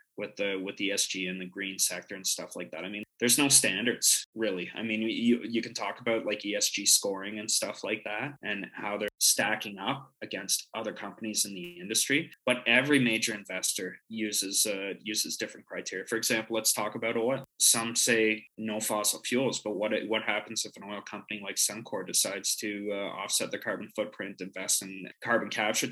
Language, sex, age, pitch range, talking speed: English, male, 20-39, 100-115 Hz, 195 wpm